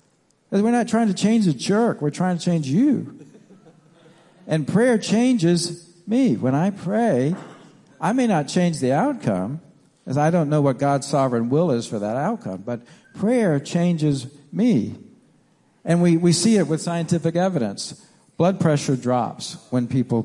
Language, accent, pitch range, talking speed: English, American, 120-175 Hz, 160 wpm